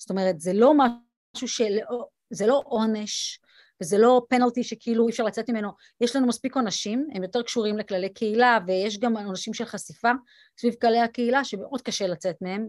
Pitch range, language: 205-260 Hz, Hebrew